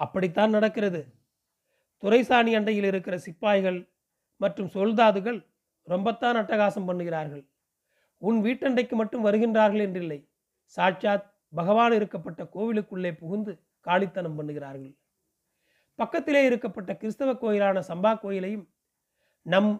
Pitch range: 180-220 Hz